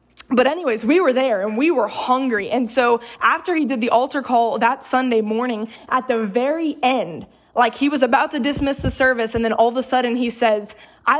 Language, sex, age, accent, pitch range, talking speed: English, female, 10-29, American, 235-280 Hz, 220 wpm